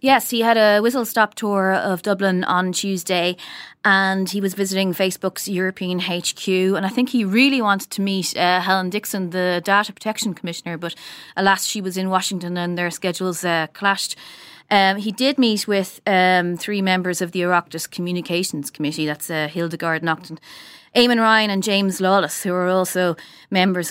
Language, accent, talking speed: English, Irish, 175 wpm